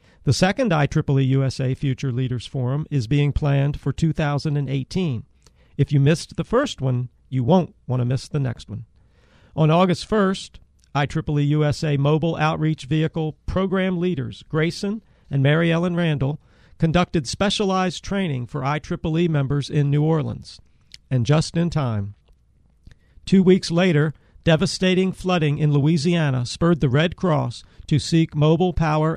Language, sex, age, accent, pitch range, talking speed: English, male, 50-69, American, 135-165 Hz, 140 wpm